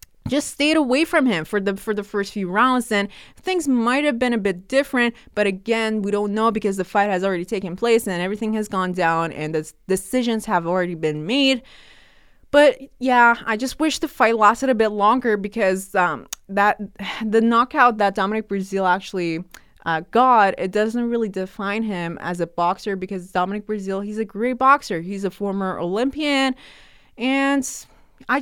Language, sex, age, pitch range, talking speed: English, female, 20-39, 195-260 Hz, 185 wpm